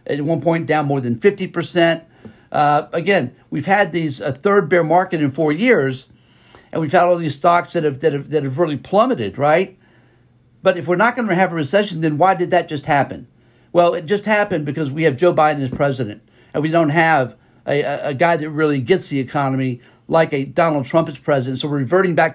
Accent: American